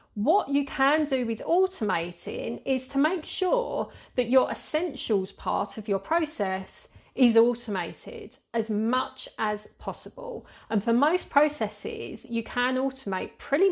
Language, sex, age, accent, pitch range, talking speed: English, female, 40-59, British, 225-290 Hz, 135 wpm